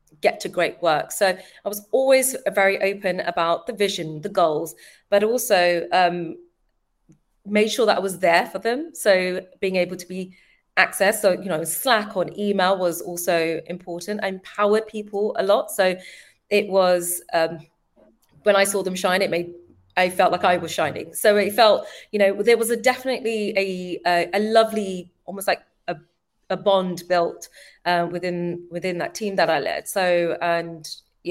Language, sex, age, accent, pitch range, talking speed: English, female, 30-49, British, 175-210 Hz, 175 wpm